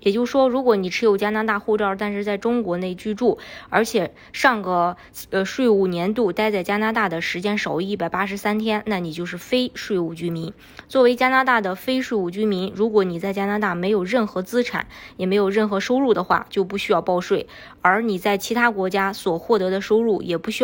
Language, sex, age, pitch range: Chinese, female, 20-39, 185-225 Hz